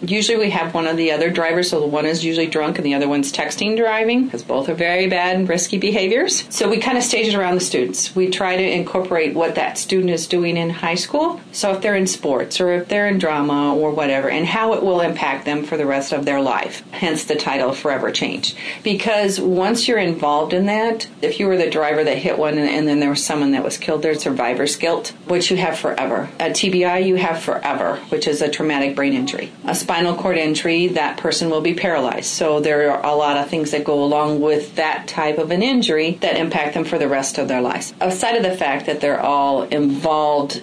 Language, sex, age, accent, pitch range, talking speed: English, female, 40-59, American, 145-180 Hz, 235 wpm